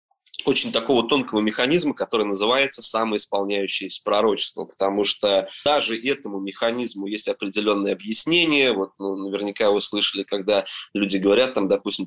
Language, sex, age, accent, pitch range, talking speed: Russian, male, 20-39, native, 100-125 Hz, 130 wpm